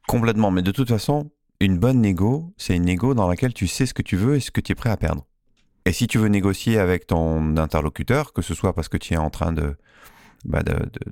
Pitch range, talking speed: 85-115 Hz, 260 wpm